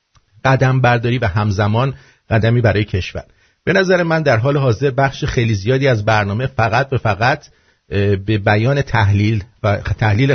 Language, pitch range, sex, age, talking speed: English, 105-130 Hz, male, 50-69, 150 wpm